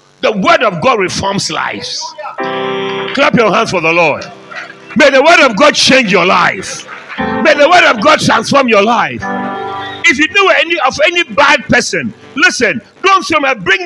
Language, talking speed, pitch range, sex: English, 175 wpm, 230-310 Hz, male